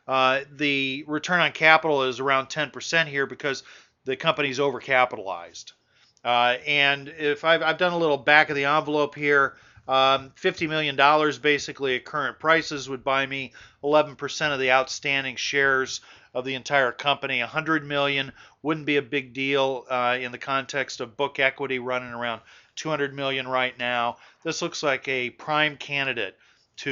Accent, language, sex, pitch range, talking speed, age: American, English, male, 125-145 Hz, 160 wpm, 40-59